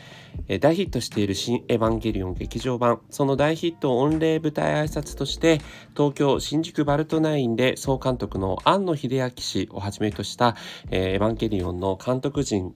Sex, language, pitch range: male, Japanese, 100-125 Hz